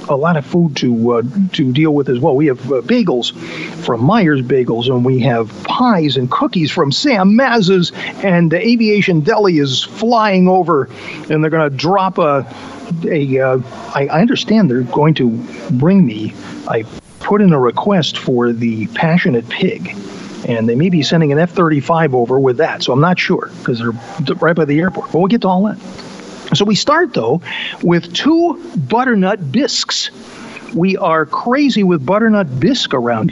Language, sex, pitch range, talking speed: English, male, 145-200 Hz, 180 wpm